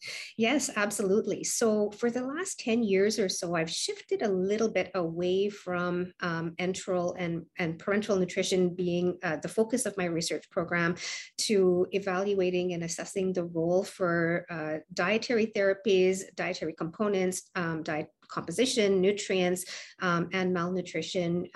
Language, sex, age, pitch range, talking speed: English, female, 50-69, 170-190 Hz, 140 wpm